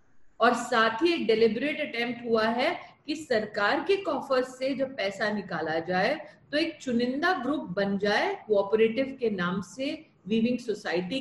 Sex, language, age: female, English, 50-69